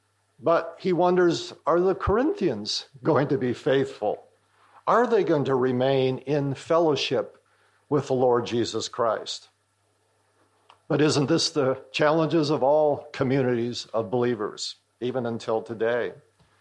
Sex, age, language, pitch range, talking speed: male, 50-69, English, 125-175 Hz, 125 wpm